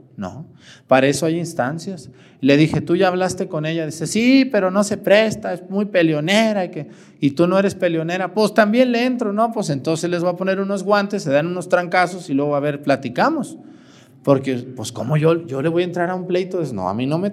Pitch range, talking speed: 130-185 Hz, 240 wpm